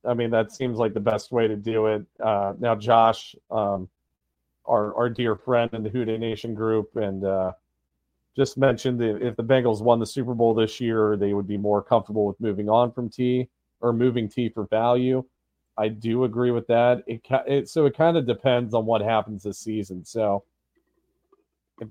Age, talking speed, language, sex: 30-49, 195 wpm, English, male